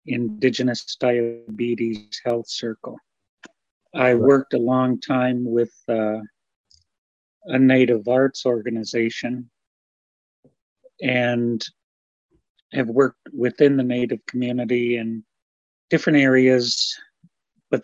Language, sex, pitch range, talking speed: English, male, 115-130 Hz, 85 wpm